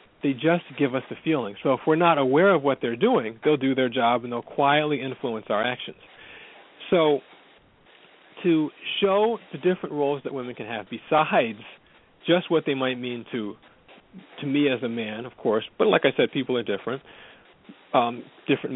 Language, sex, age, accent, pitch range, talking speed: English, male, 40-59, American, 125-155 Hz, 185 wpm